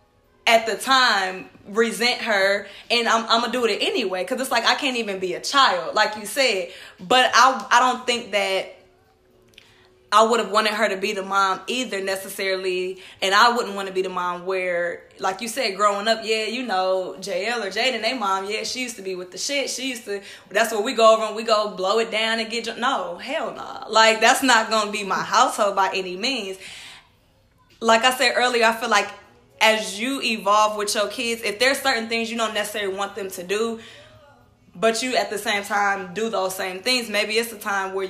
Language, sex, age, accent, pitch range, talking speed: English, female, 20-39, American, 190-225 Hz, 225 wpm